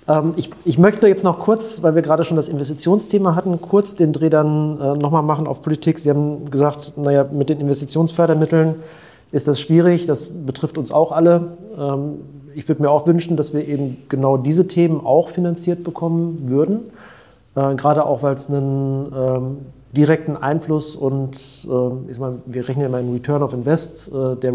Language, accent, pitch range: German, German, 135-160 Hz